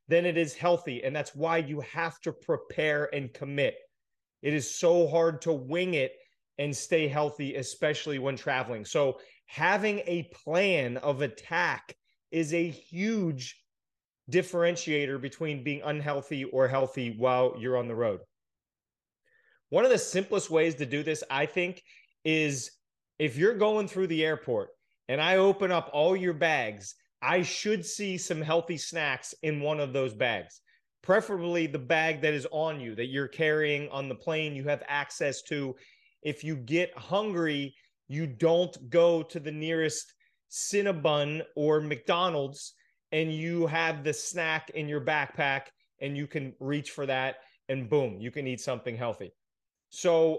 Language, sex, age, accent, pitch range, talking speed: English, male, 30-49, American, 140-175 Hz, 160 wpm